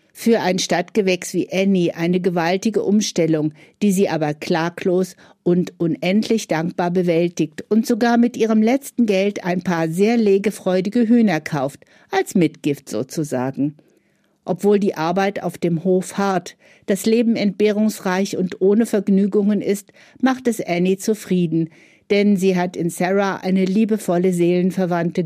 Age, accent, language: 50-69, German, German